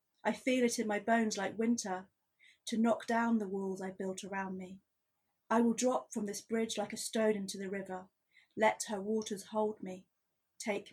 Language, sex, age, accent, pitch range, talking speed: English, female, 30-49, British, 205-245 Hz, 190 wpm